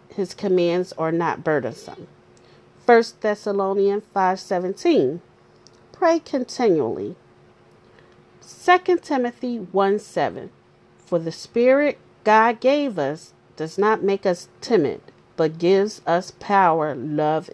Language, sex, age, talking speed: English, female, 40-59, 105 wpm